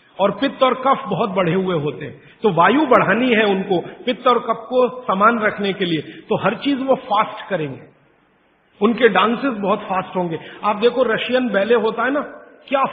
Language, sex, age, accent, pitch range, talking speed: Gujarati, male, 50-69, native, 180-230 Hz, 110 wpm